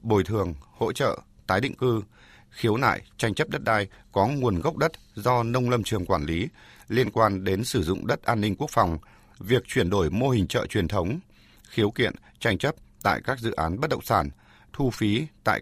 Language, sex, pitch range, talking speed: Vietnamese, male, 95-120 Hz, 210 wpm